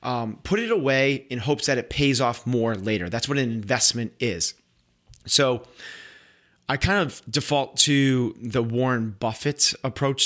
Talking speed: 160 wpm